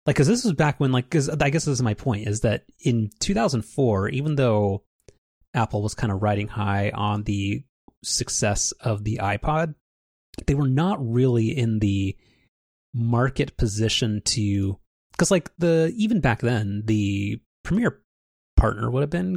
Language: English